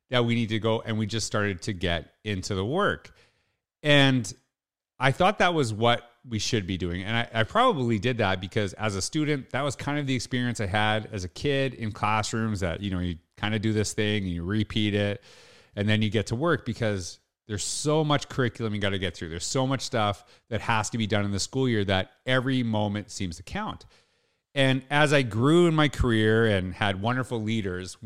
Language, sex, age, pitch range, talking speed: English, male, 30-49, 105-125 Hz, 225 wpm